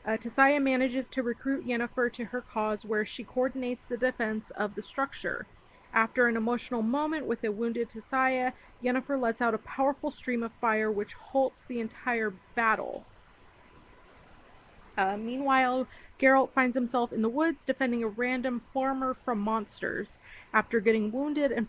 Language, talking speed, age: English, 155 wpm, 30-49